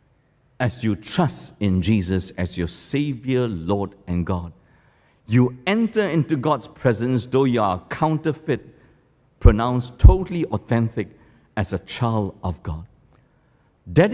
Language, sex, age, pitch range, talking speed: English, male, 60-79, 110-165 Hz, 125 wpm